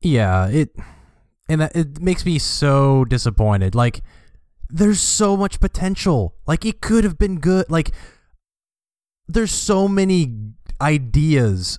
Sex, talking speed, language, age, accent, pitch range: male, 125 wpm, English, 20-39, American, 115-160 Hz